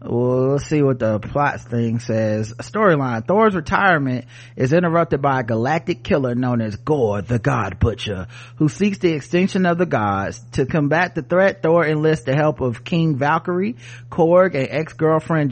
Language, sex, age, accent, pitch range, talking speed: English, male, 30-49, American, 120-165 Hz, 170 wpm